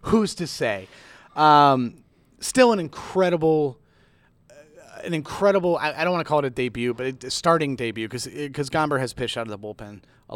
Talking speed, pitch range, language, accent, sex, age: 190 wpm, 120-150 Hz, English, American, male, 30-49